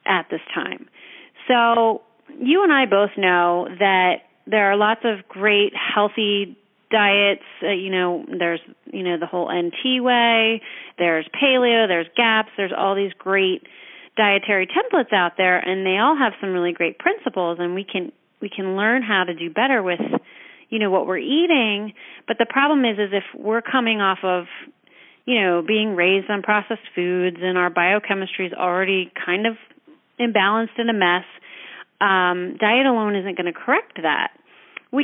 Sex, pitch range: female, 185-230 Hz